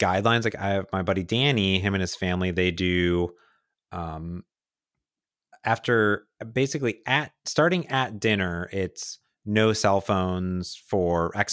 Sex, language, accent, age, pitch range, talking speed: male, English, American, 30-49, 90-115 Hz, 135 wpm